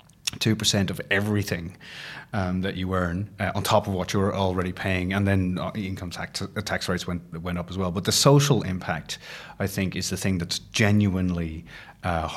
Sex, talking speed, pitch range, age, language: male, 195 wpm, 90-105 Hz, 30-49, English